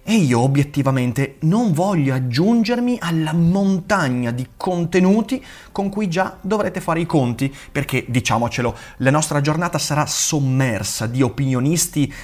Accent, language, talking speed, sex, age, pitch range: native, Italian, 125 wpm, male, 30-49, 115-175 Hz